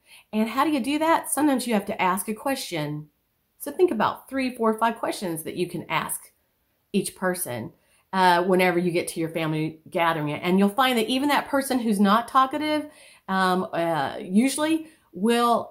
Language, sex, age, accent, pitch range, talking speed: English, female, 40-59, American, 165-255 Hz, 185 wpm